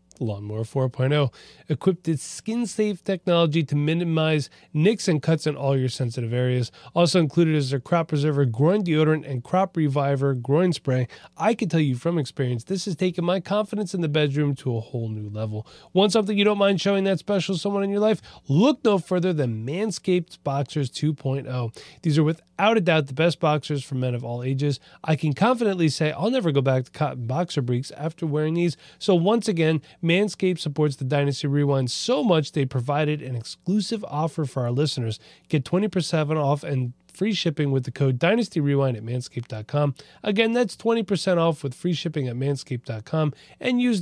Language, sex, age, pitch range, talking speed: English, male, 30-49, 135-185 Hz, 185 wpm